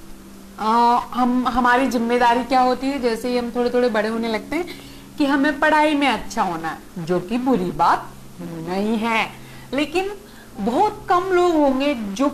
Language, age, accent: Hindi, 50-69, native